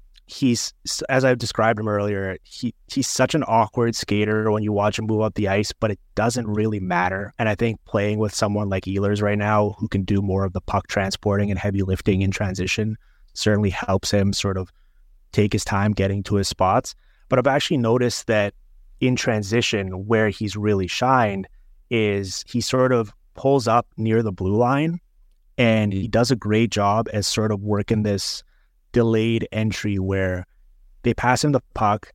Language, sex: English, male